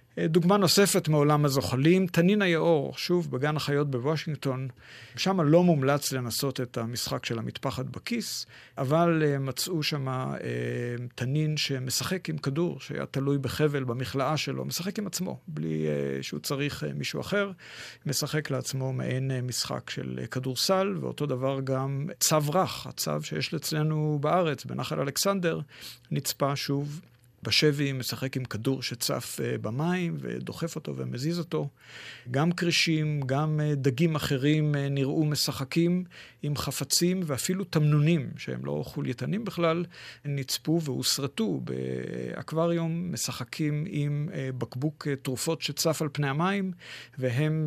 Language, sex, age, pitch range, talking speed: Hebrew, male, 50-69, 130-160 Hz, 125 wpm